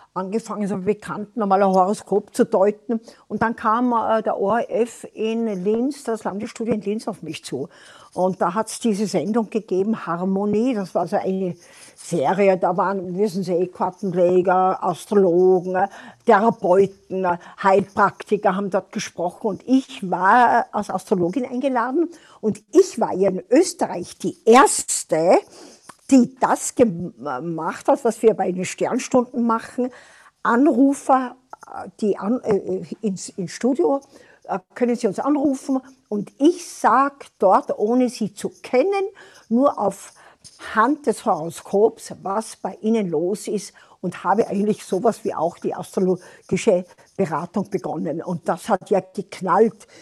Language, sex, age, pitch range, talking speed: German, female, 60-79, 190-245 Hz, 135 wpm